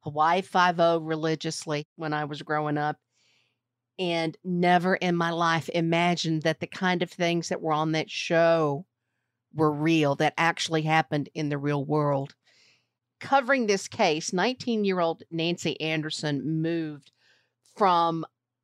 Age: 50-69